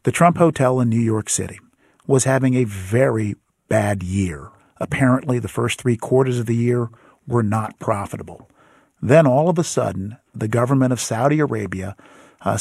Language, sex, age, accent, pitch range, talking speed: English, male, 50-69, American, 110-150 Hz, 165 wpm